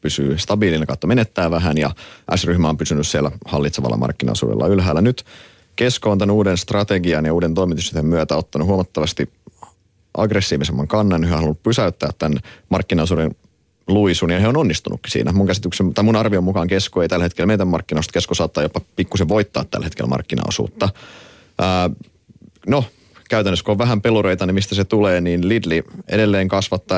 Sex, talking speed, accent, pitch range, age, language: male, 155 wpm, native, 80-100 Hz, 30-49, Finnish